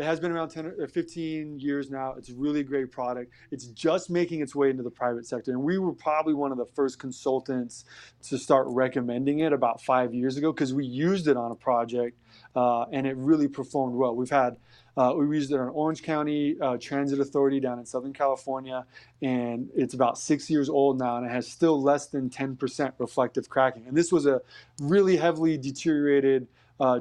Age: 20-39